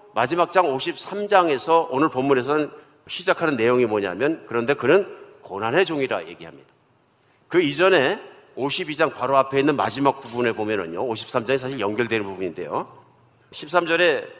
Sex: male